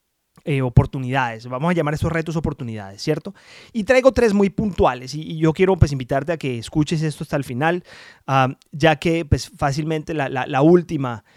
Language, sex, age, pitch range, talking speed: Spanish, male, 30-49, 135-170 Hz, 190 wpm